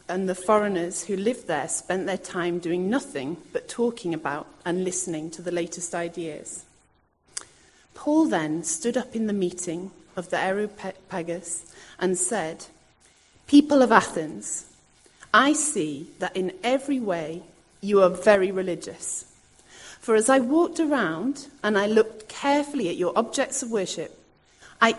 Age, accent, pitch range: 30-49, British, 175-245 Hz